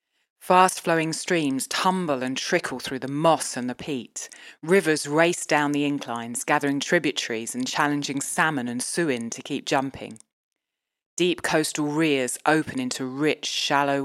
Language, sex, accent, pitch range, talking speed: English, female, British, 130-155 Hz, 140 wpm